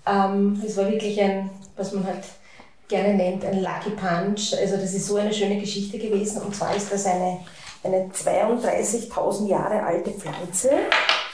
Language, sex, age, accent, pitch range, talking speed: German, female, 40-59, Austrian, 190-225 Hz, 165 wpm